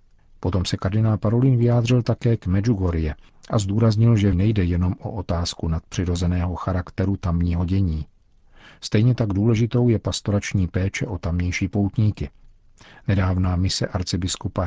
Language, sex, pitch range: Czech, male, 90-105 Hz